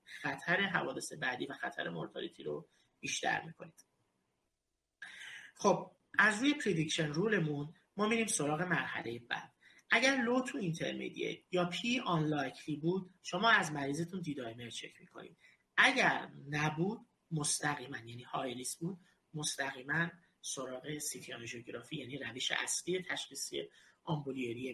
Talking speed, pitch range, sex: 110 wpm, 140-185 Hz, male